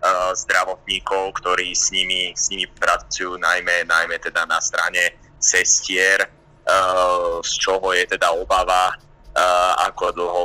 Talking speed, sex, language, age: 125 wpm, male, Slovak, 30-49